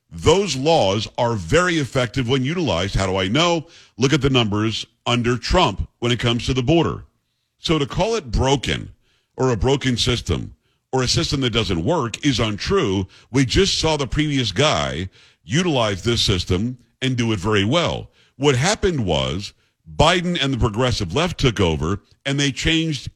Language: English